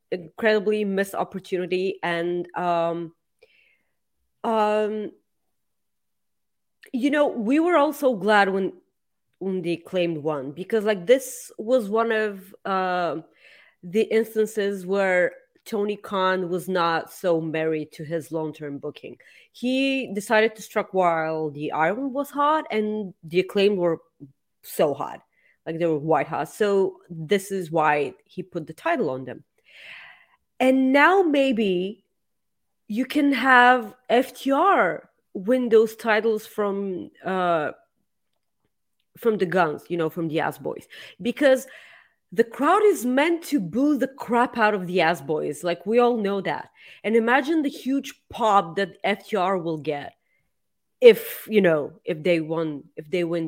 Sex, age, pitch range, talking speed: female, 30-49, 175-255 Hz, 140 wpm